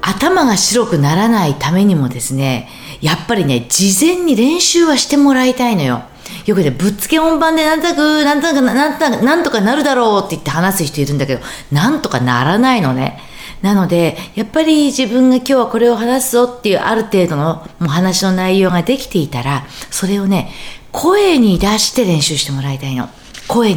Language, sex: Japanese, female